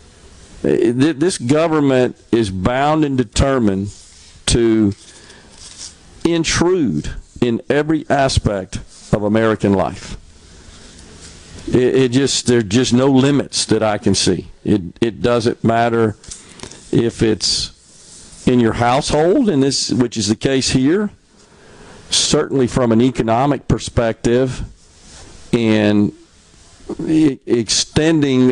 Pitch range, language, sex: 95-130 Hz, English, male